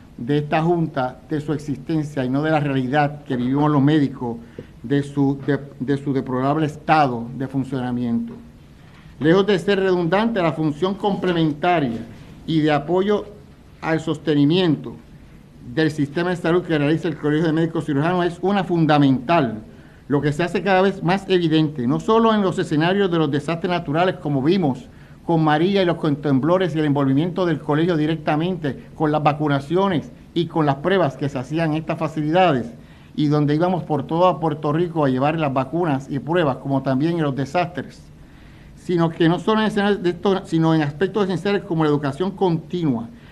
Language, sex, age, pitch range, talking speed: Spanish, male, 50-69, 140-175 Hz, 175 wpm